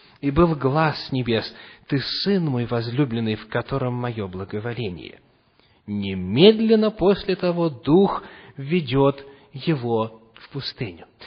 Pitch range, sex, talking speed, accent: 140-225 Hz, male, 105 wpm, native